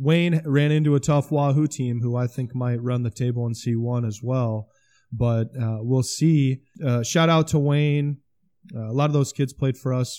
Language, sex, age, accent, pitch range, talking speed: English, male, 20-39, American, 115-130 Hz, 210 wpm